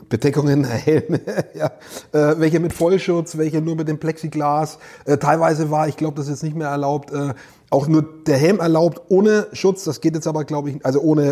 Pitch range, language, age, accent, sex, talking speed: 140-175 Hz, German, 30-49, German, male, 210 wpm